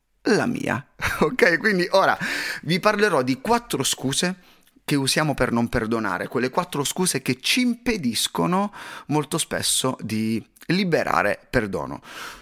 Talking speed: 125 wpm